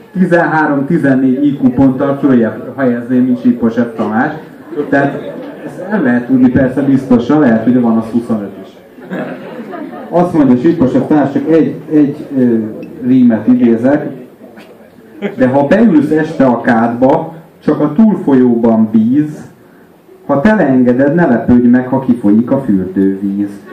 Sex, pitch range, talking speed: male, 110-140 Hz, 120 wpm